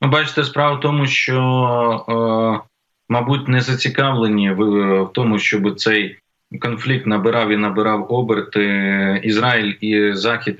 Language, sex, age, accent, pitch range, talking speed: Ukrainian, male, 20-39, native, 105-125 Hz, 120 wpm